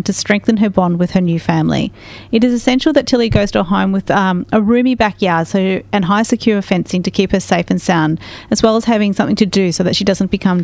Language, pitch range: English, 185-225 Hz